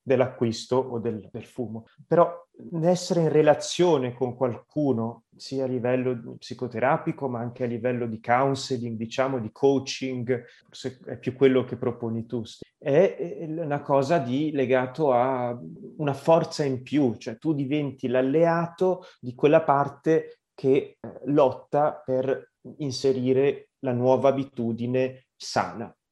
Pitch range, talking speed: 125-160 Hz, 125 wpm